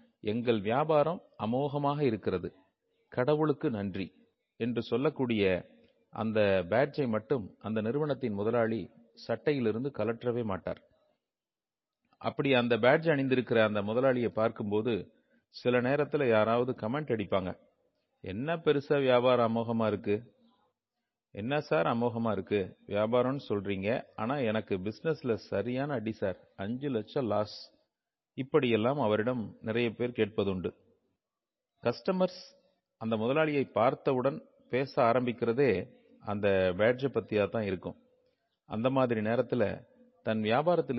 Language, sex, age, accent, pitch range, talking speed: Tamil, male, 40-59, native, 110-145 Hz, 100 wpm